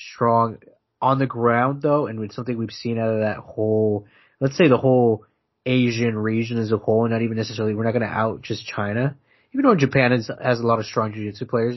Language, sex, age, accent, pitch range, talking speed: English, male, 20-39, American, 105-125 Hz, 225 wpm